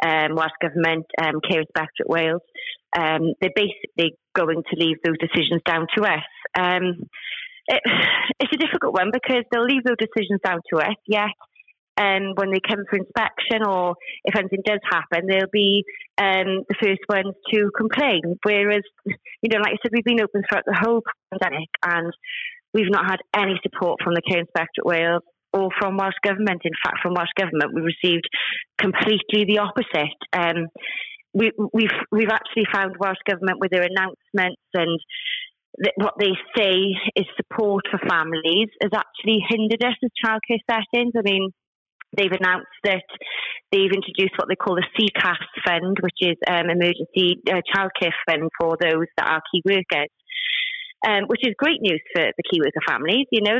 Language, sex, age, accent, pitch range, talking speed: English, female, 30-49, British, 175-220 Hz, 175 wpm